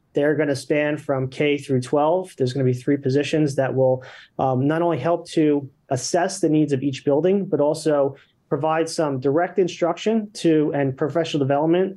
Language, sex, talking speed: English, male, 175 wpm